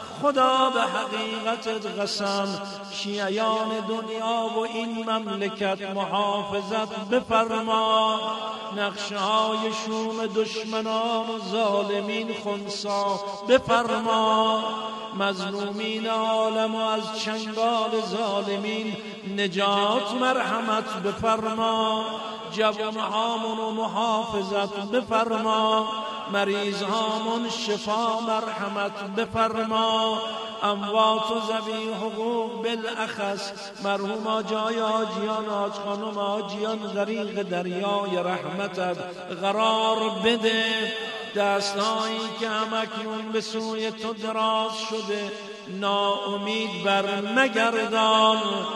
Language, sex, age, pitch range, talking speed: Persian, male, 50-69, 205-220 Hz, 75 wpm